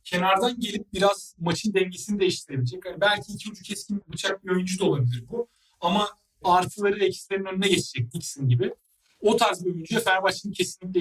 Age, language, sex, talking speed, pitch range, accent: 40-59, Turkish, male, 165 wpm, 155-195 Hz, native